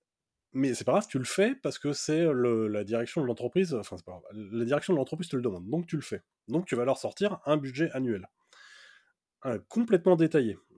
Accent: French